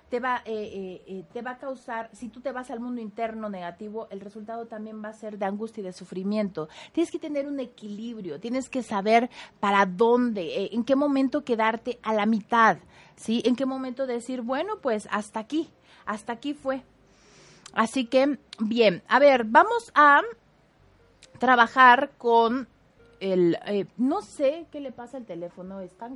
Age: 30-49